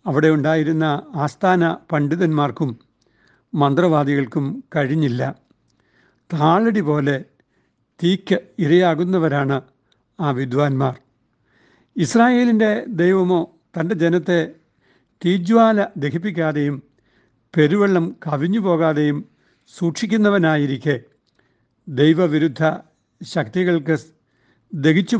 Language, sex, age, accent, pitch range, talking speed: Malayalam, male, 60-79, native, 145-175 Hz, 60 wpm